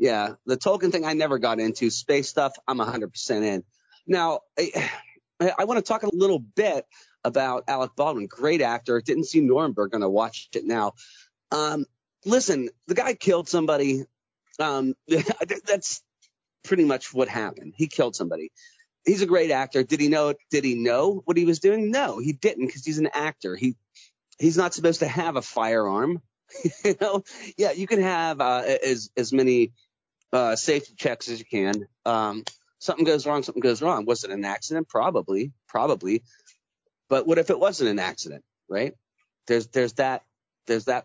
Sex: male